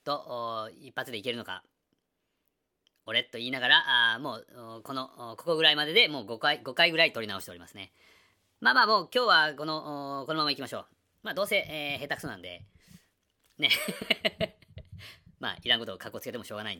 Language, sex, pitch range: Japanese, female, 115-165 Hz